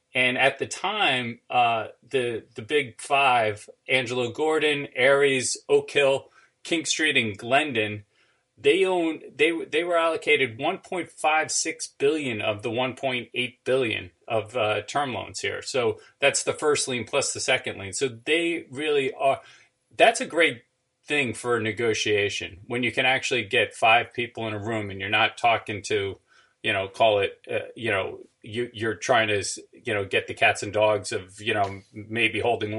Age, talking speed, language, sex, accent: 30-49, 165 wpm, English, male, American